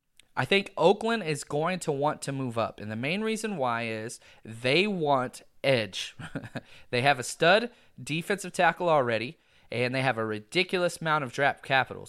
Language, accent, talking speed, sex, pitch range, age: English, American, 175 wpm, male, 125-180 Hz, 30-49